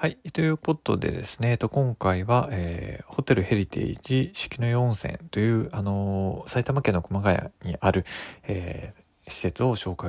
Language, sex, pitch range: Japanese, male, 95-125 Hz